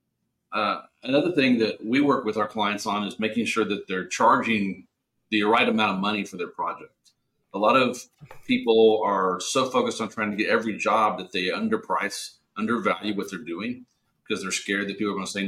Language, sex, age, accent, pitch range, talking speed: English, male, 40-59, American, 100-115 Hz, 205 wpm